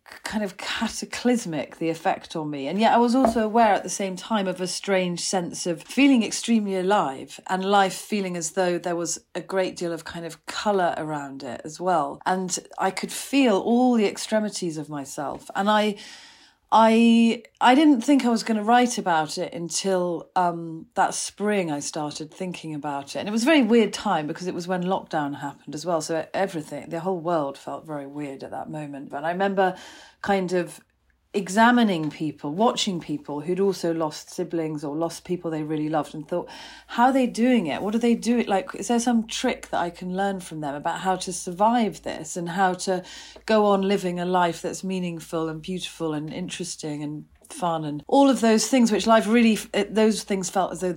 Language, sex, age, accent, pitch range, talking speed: English, female, 40-59, British, 165-220 Hz, 205 wpm